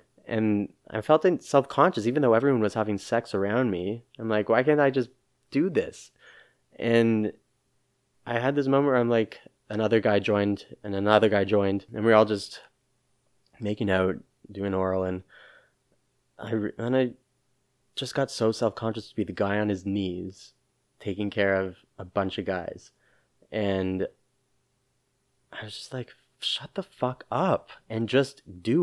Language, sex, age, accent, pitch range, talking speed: English, male, 20-39, American, 105-130 Hz, 160 wpm